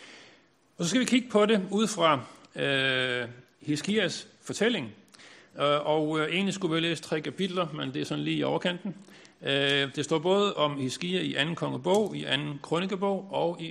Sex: male